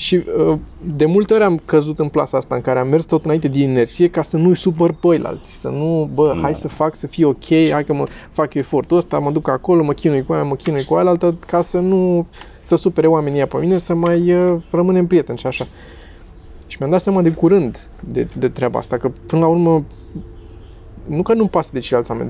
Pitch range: 140-185 Hz